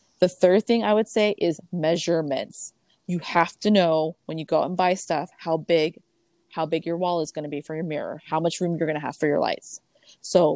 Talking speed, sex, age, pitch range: 245 wpm, female, 20-39, 155-185 Hz